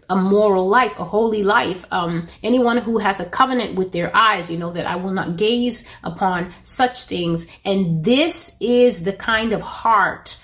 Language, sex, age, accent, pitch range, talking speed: English, female, 30-49, American, 160-230 Hz, 185 wpm